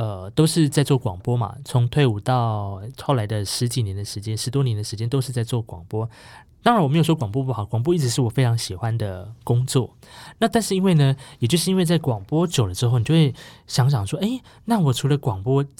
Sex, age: male, 20-39